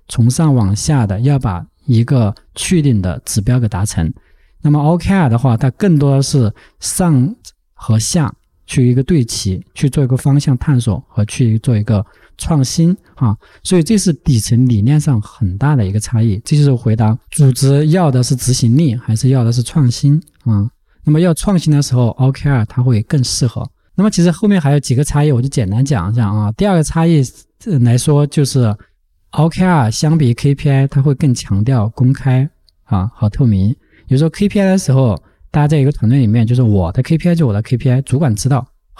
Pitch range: 110-150 Hz